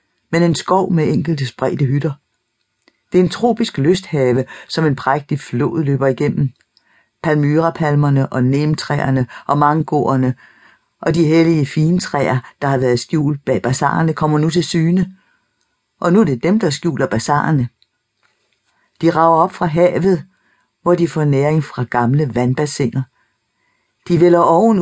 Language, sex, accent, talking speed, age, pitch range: Danish, female, native, 145 wpm, 60-79, 130-170 Hz